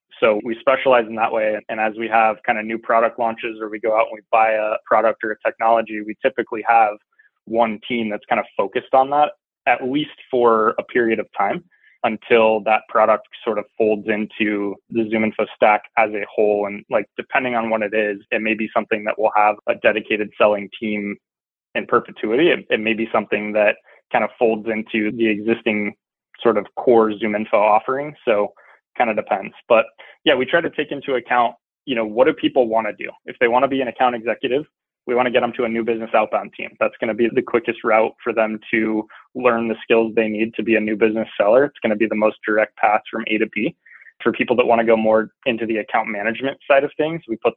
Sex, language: male, English